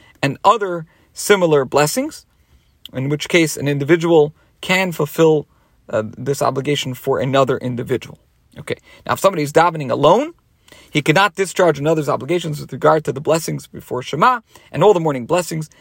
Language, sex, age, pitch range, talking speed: English, male, 40-59, 145-195 Hz, 155 wpm